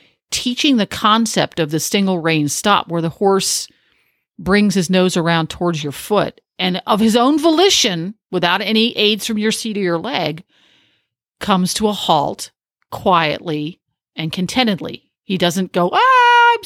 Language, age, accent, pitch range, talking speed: English, 50-69, American, 170-220 Hz, 160 wpm